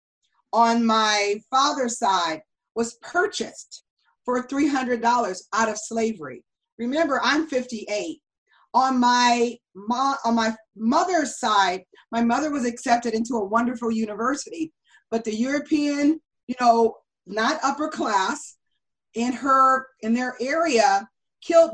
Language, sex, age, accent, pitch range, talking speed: English, female, 40-59, American, 225-280 Hz, 120 wpm